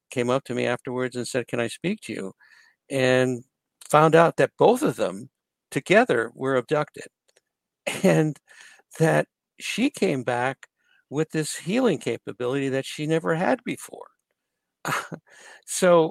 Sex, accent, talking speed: male, American, 140 wpm